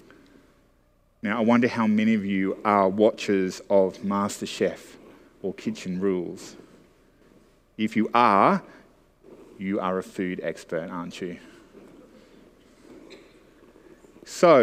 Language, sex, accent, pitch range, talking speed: English, male, Australian, 110-140 Hz, 105 wpm